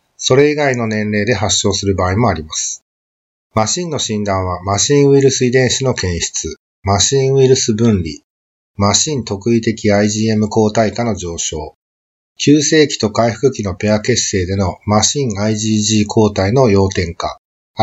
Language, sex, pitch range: Japanese, male, 95-120 Hz